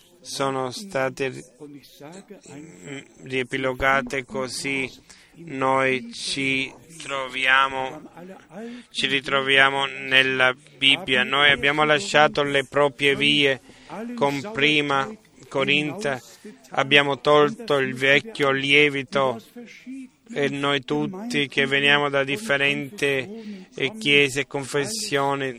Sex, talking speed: male, 80 wpm